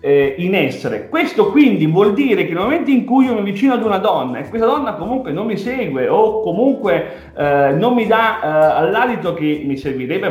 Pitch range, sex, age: 145-225 Hz, male, 30-49